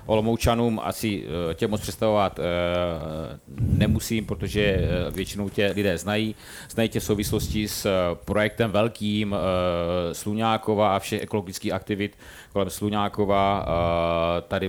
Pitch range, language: 95-105 Hz, Czech